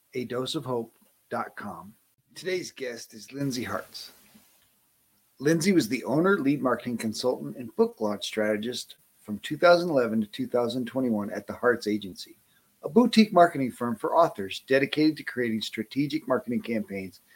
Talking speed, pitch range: 140 wpm, 115-160 Hz